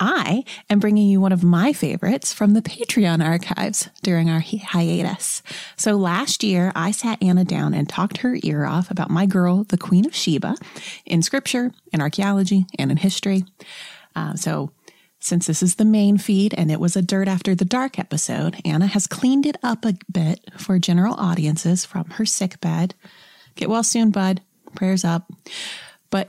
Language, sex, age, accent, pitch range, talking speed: English, female, 30-49, American, 175-220 Hz, 185 wpm